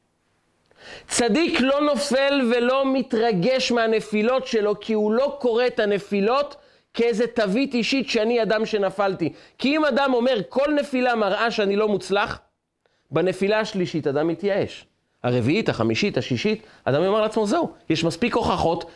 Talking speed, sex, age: 135 wpm, male, 40-59